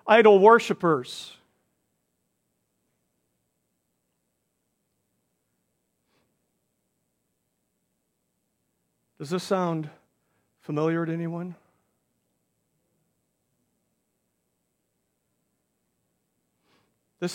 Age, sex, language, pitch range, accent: 50-69, male, English, 180-230 Hz, American